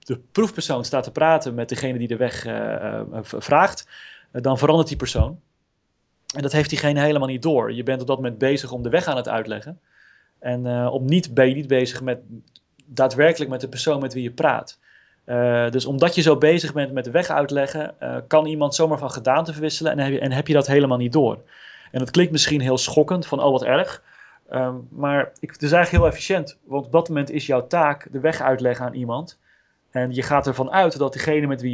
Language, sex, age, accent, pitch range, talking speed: Dutch, male, 30-49, Dutch, 130-155 Hz, 230 wpm